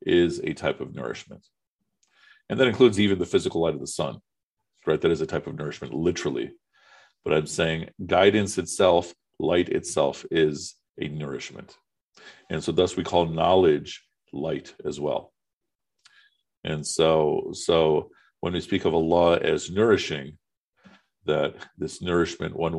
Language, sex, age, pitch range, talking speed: English, male, 50-69, 80-120 Hz, 145 wpm